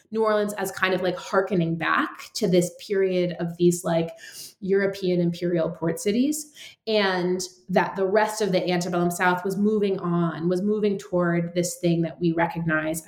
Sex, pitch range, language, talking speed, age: female, 175-230 Hz, English, 170 wpm, 20-39